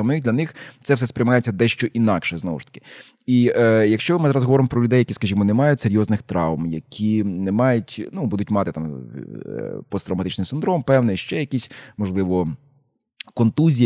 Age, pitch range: 20-39, 100-120 Hz